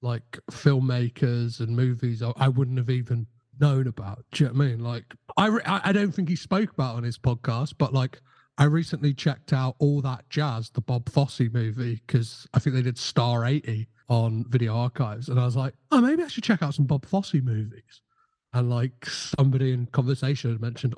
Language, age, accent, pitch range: English, 40-59, British, 120-150 Hz